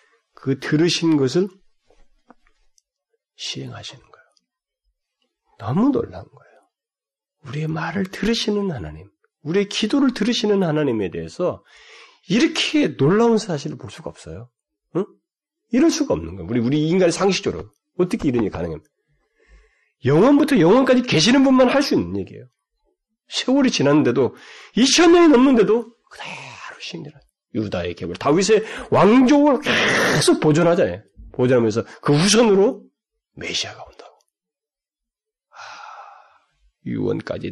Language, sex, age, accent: Korean, male, 40-59, native